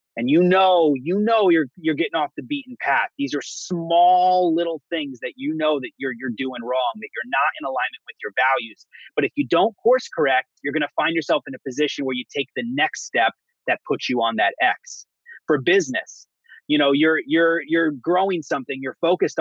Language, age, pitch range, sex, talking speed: English, 30-49, 140-215 Hz, male, 215 wpm